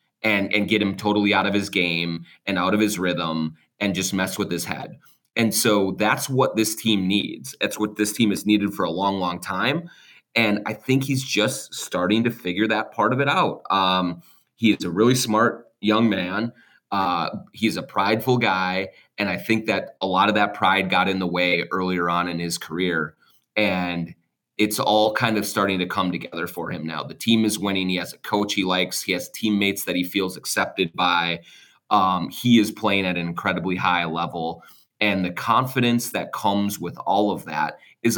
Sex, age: male, 30-49